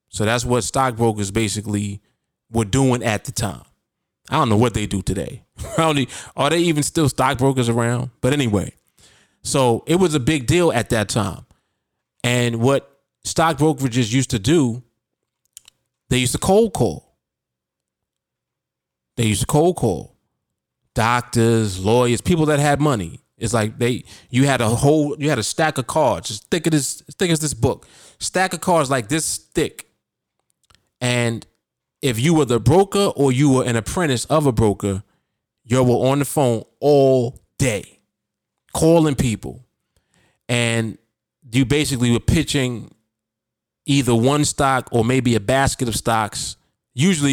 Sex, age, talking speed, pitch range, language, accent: male, 20-39, 150 wpm, 115-140 Hz, English, American